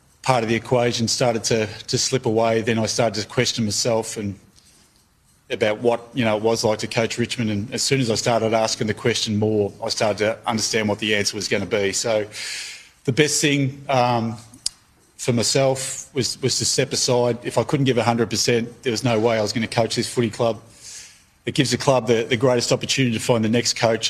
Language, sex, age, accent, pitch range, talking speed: English, male, 30-49, Australian, 110-135 Hz, 225 wpm